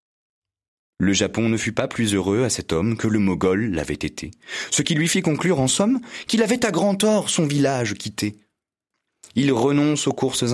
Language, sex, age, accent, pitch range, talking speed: French, male, 30-49, French, 90-145 Hz, 195 wpm